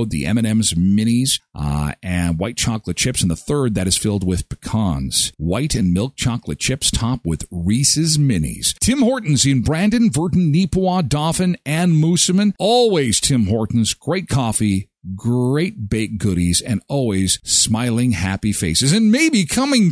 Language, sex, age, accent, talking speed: English, male, 50-69, American, 150 wpm